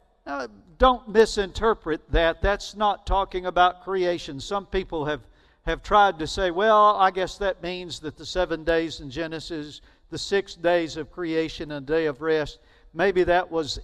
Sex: male